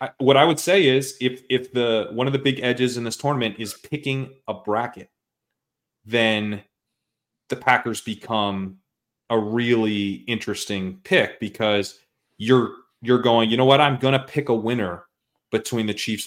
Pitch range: 105-130 Hz